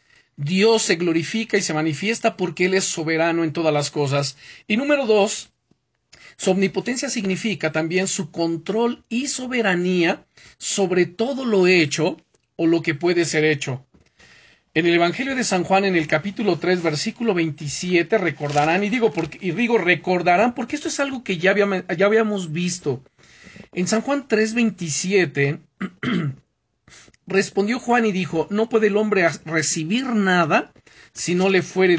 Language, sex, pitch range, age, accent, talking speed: Spanish, male, 160-205 Hz, 40-59, Mexican, 155 wpm